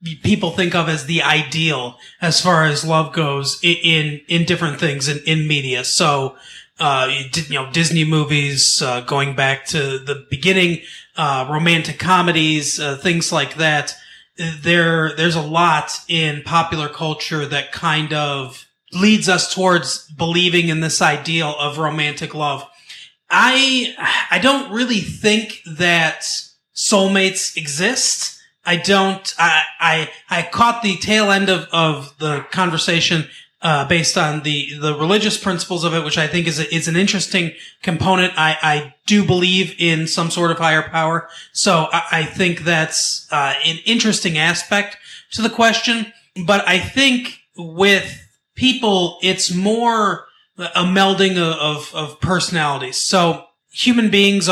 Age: 30-49